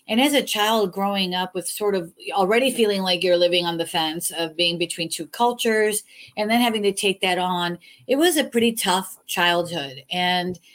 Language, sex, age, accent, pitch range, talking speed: English, female, 40-59, American, 170-210 Hz, 200 wpm